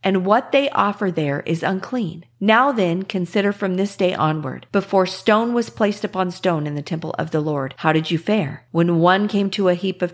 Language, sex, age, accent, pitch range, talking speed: English, female, 40-59, American, 160-210 Hz, 220 wpm